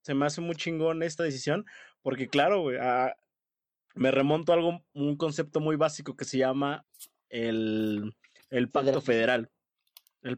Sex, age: male, 20-39